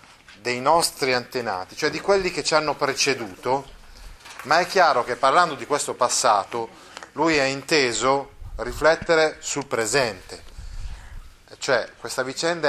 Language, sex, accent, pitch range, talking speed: Italian, male, native, 105-140 Hz, 130 wpm